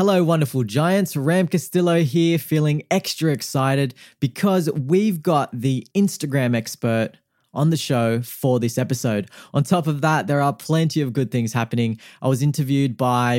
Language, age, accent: English, 20-39, Australian